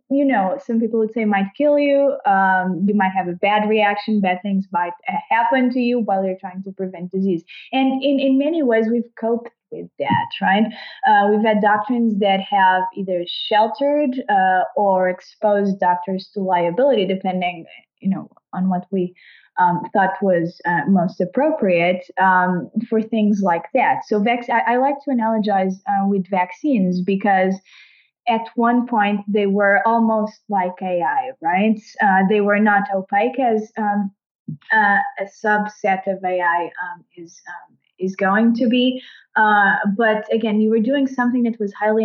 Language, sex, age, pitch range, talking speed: English, female, 20-39, 190-235 Hz, 170 wpm